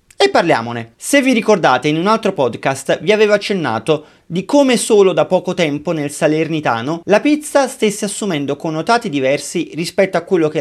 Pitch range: 150-215 Hz